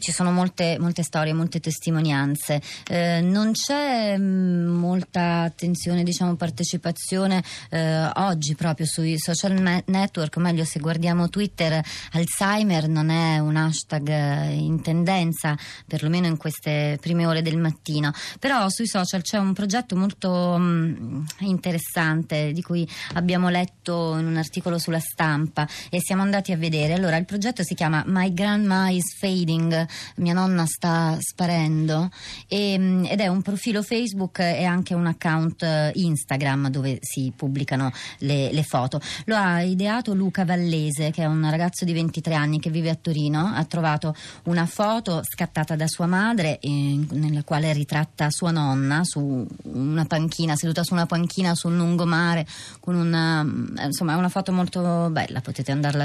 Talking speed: 155 wpm